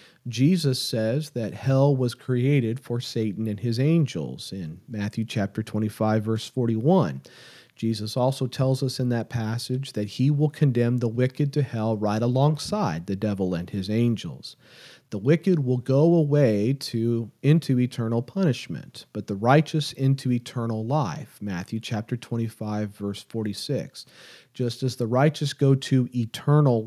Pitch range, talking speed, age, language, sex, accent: 110-135 Hz, 145 wpm, 40-59, English, male, American